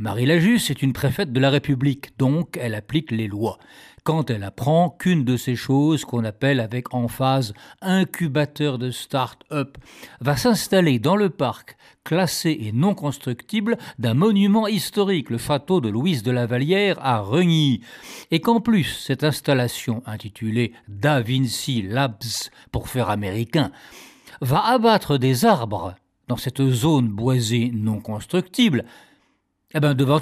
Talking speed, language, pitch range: 150 wpm, French, 120-160 Hz